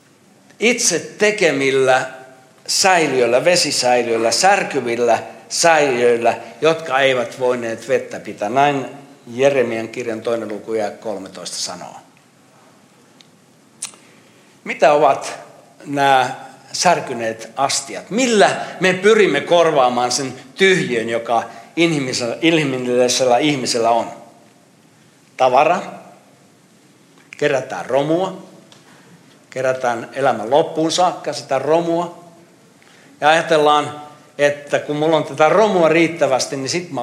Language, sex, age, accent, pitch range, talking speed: Finnish, male, 60-79, native, 130-170 Hz, 90 wpm